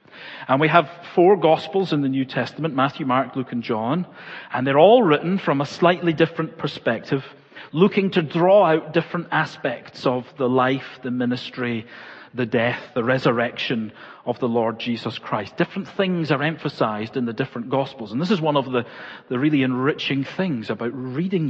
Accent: British